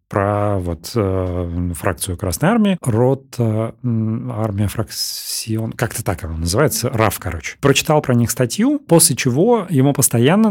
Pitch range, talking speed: 105-140 Hz, 145 wpm